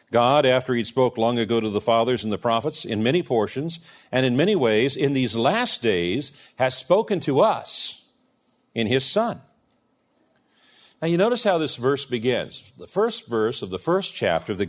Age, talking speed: 50-69, 190 wpm